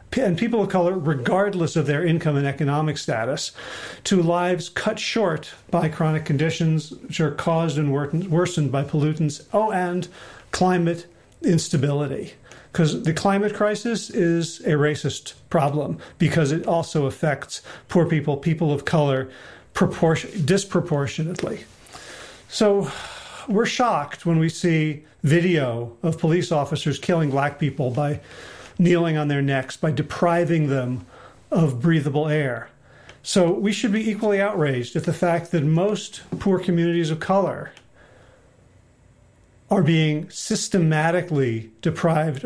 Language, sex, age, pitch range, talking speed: English, male, 40-59, 145-175 Hz, 125 wpm